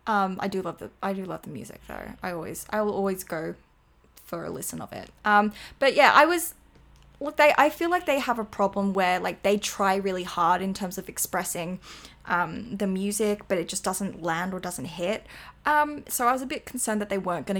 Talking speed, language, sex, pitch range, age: 230 wpm, English, female, 190-240 Hz, 10-29